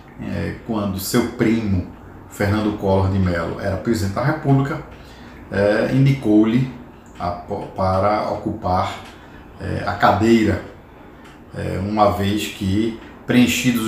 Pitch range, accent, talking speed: 95-115 Hz, Brazilian, 110 wpm